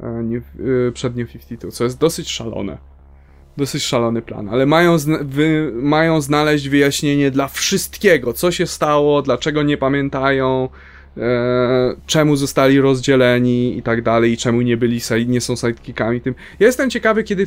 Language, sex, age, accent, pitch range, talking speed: Polish, male, 20-39, native, 120-160 Hz, 155 wpm